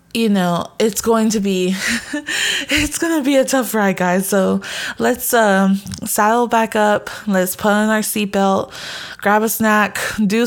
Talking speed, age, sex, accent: 165 wpm, 20-39, female, American